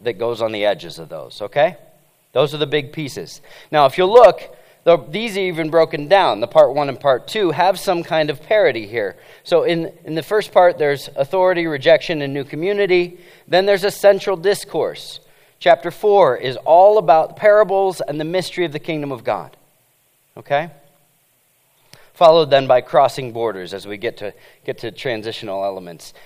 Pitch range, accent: 130-185 Hz, American